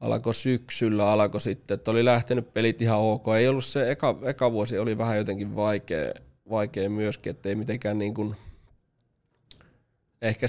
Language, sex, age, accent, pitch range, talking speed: Finnish, male, 20-39, native, 100-115 Hz, 160 wpm